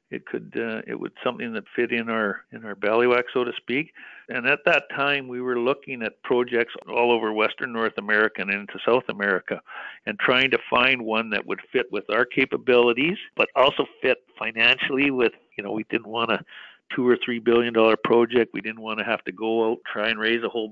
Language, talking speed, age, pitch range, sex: English, 215 wpm, 50-69, 110-125 Hz, male